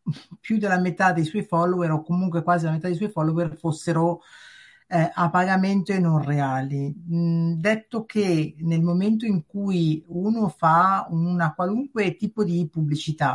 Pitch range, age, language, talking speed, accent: 160-185 Hz, 50-69, Italian, 155 wpm, native